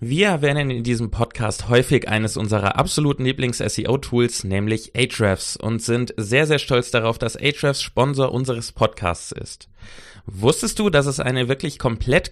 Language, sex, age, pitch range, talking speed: German, male, 20-39, 110-145 Hz, 150 wpm